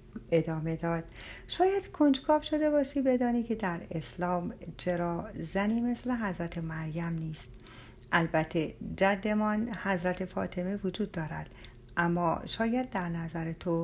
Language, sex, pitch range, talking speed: Persian, female, 165-220 Hz, 115 wpm